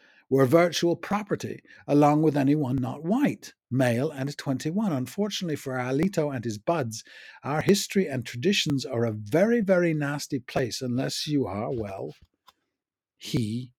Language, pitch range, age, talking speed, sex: English, 115-145 Hz, 60-79, 140 wpm, male